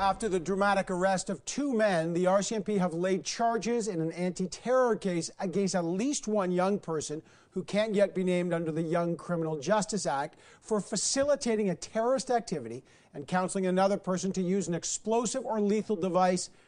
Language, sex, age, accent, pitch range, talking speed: English, male, 50-69, American, 170-210 Hz, 175 wpm